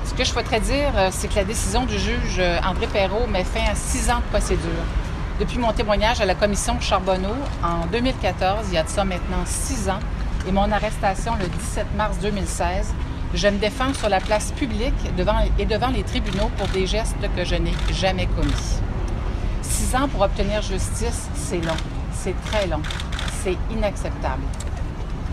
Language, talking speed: French, 180 wpm